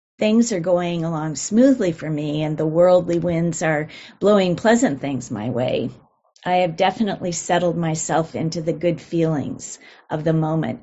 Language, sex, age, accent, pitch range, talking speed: English, female, 40-59, American, 160-195 Hz, 160 wpm